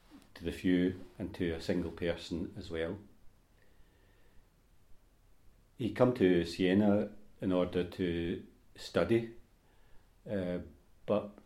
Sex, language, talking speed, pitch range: male, English, 110 wpm, 90-100 Hz